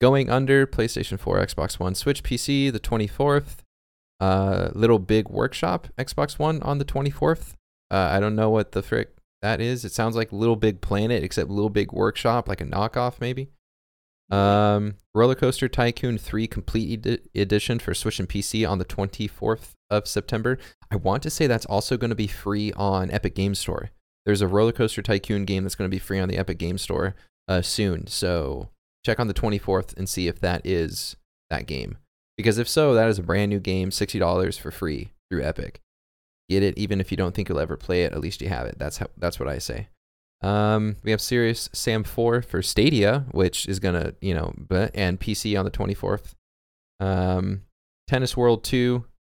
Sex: male